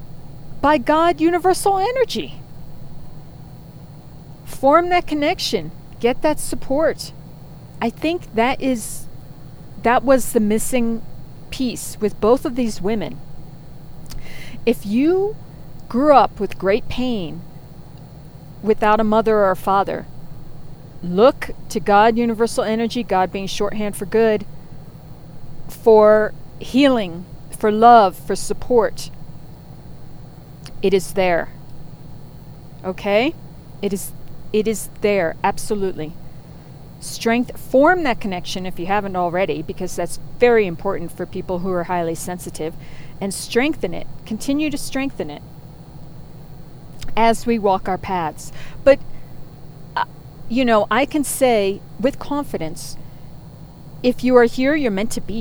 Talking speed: 120 wpm